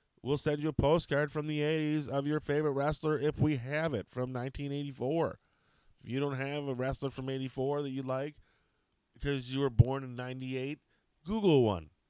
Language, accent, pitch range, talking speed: English, American, 100-135 Hz, 185 wpm